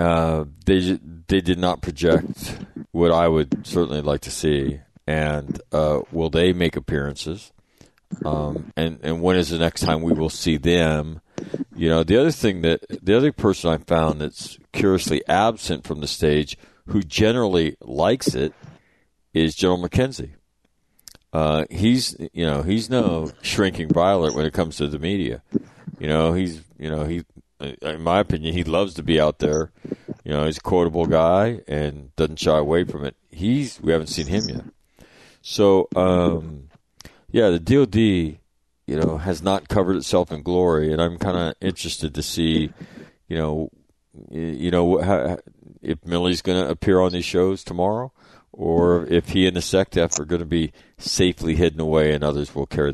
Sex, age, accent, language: male, 40-59, American, English